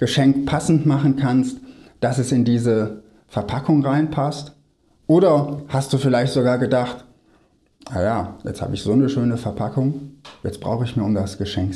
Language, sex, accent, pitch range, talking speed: German, male, German, 110-150 Hz, 160 wpm